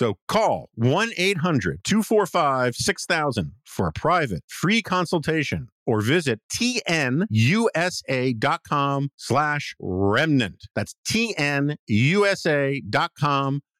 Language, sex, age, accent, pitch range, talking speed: English, male, 50-69, American, 100-135 Hz, 65 wpm